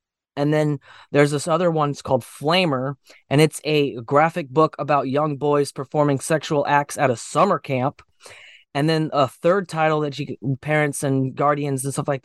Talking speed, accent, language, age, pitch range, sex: 180 wpm, American, English, 20-39, 140-165 Hz, male